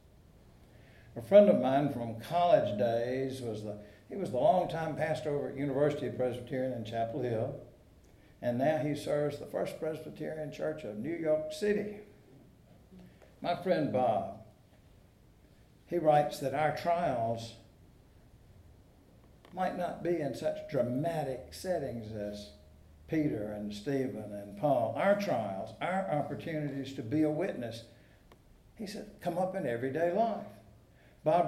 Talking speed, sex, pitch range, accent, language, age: 135 wpm, male, 115-170 Hz, American, English, 60-79